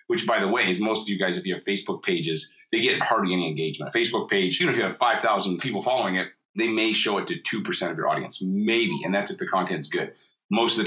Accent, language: American, English